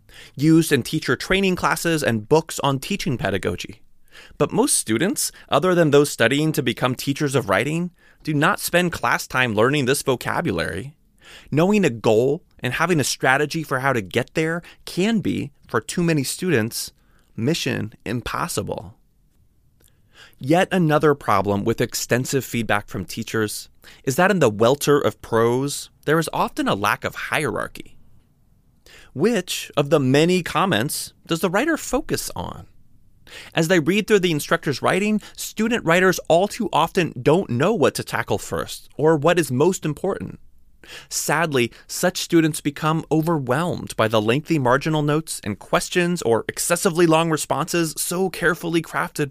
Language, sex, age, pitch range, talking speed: English, male, 20-39, 125-175 Hz, 150 wpm